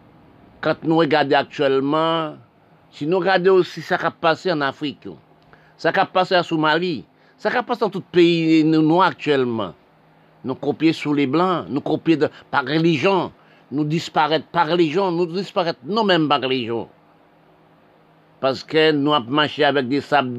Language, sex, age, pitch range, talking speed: French, male, 60-79, 140-185 Hz, 165 wpm